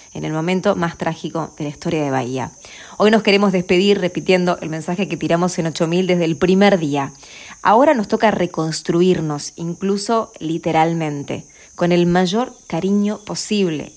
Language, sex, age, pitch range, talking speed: English, female, 20-39, 160-210 Hz, 155 wpm